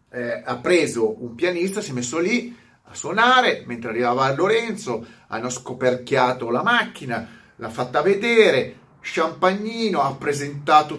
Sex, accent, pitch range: male, native, 125-180 Hz